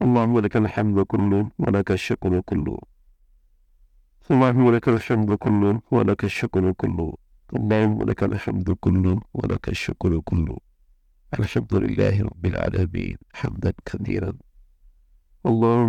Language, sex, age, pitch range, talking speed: English, male, 50-69, 90-110 Hz, 65 wpm